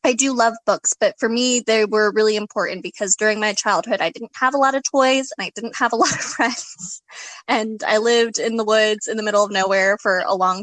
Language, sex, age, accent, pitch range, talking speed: English, female, 20-39, American, 200-245 Hz, 250 wpm